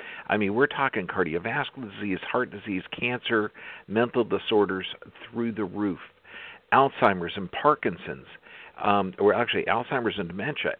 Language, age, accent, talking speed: English, 50-69, American, 130 wpm